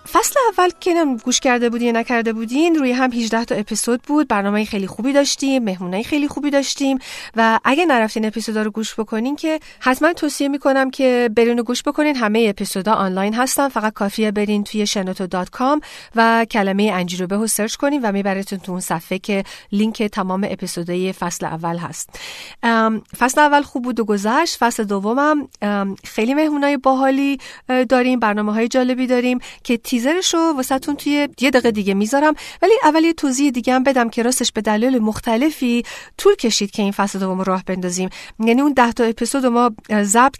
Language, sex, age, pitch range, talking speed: Persian, female, 40-59, 205-260 Hz, 175 wpm